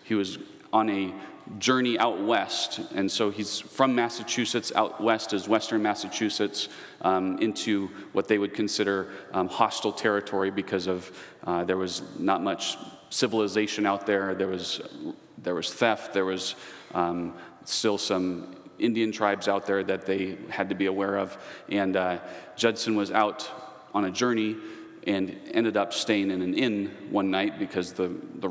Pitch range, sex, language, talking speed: 95-105 Hz, male, English, 160 wpm